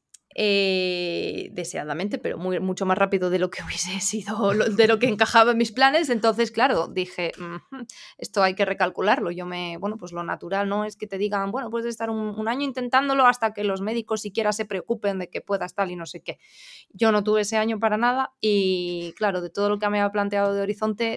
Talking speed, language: 215 wpm, Spanish